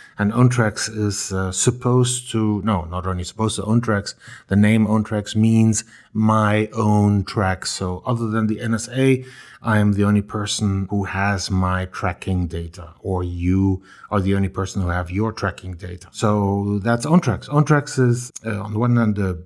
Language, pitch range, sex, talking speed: English, 95-120 Hz, male, 175 wpm